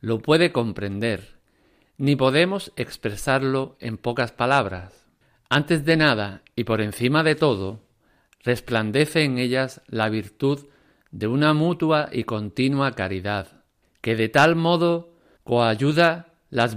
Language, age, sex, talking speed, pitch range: Spanish, 50-69, male, 120 wpm, 110-150 Hz